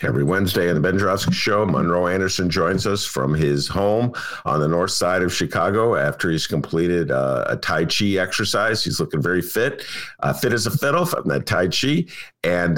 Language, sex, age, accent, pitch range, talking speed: English, male, 50-69, American, 90-130 Hz, 195 wpm